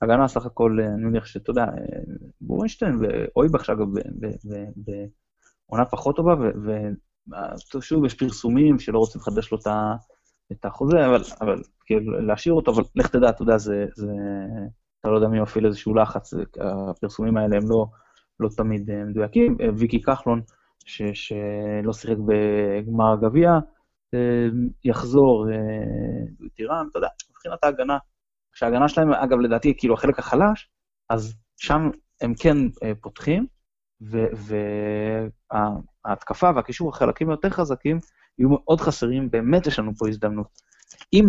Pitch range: 110-135 Hz